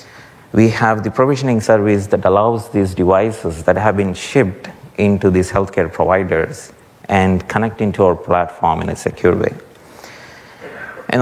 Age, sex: 30-49, male